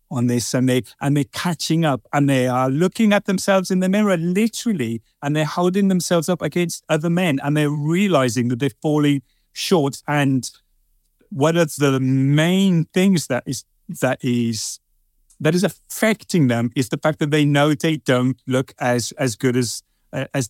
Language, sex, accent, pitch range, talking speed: English, male, British, 125-160 Hz, 180 wpm